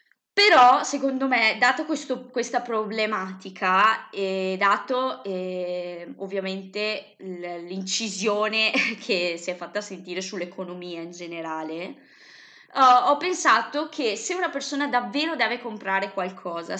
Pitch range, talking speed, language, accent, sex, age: 195-265 Hz, 105 wpm, Italian, native, female, 20-39